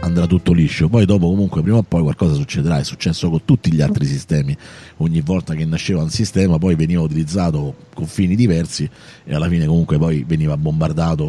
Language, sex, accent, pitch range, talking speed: Italian, male, native, 80-110 Hz, 195 wpm